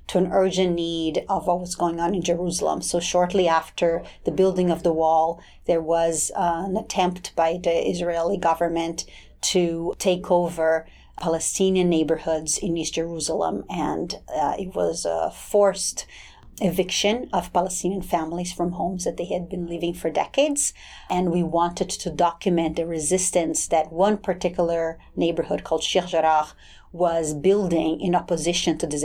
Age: 40-59